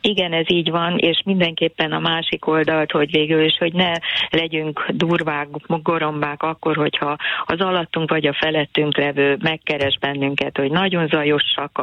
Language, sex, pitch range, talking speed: Hungarian, female, 140-165 Hz, 150 wpm